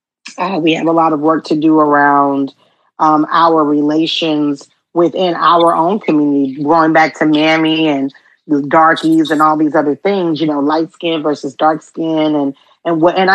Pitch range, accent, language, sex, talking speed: 155-180 Hz, American, English, female, 180 wpm